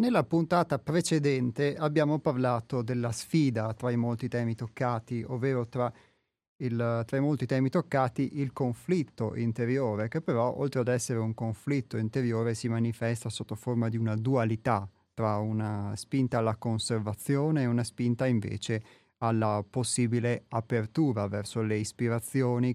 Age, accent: 30-49, native